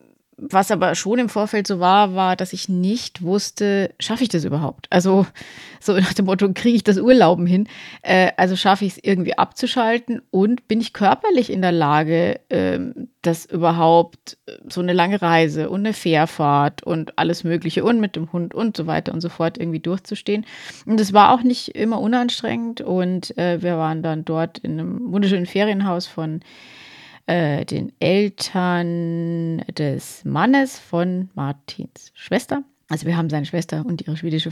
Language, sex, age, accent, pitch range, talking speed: German, female, 30-49, German, 170-215 Hz, 170 wpm